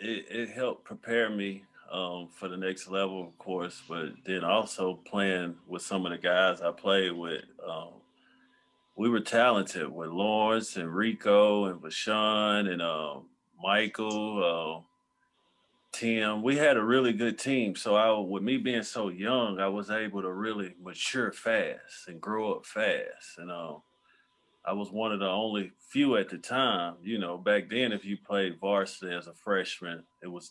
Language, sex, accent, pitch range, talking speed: English, male, American, 95-115 Hz, 165 wpm